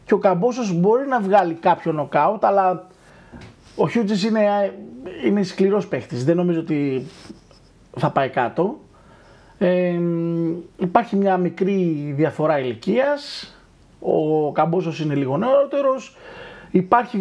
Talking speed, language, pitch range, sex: 110 wpm, Greek, 155-205 Hz, male